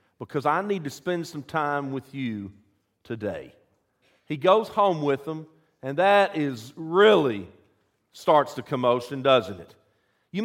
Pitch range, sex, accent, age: 135-205 Hz, male, American, 50-69